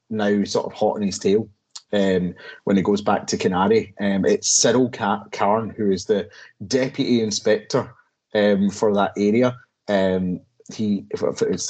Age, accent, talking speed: 30-49, British, 155 wpm